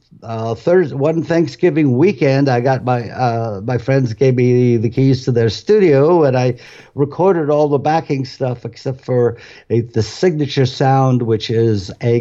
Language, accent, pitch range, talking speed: English, American, 110-135 Hz, 165 wpm